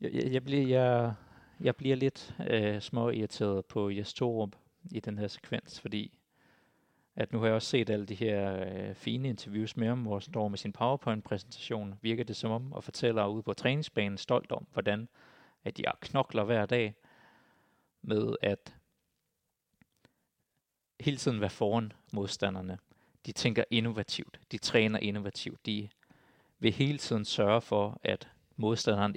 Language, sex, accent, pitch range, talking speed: Danish, male, native, 100-120 Hz, 155 wpm